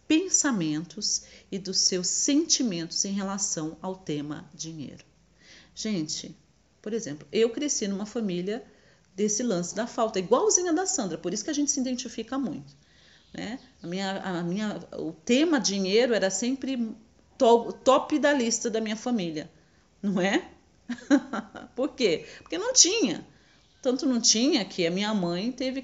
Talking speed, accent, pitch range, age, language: 150 wpm, Brazilian, 185-260 Hz, 40-59, Portuguese